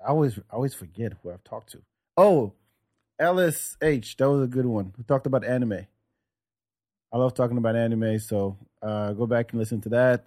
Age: 30-49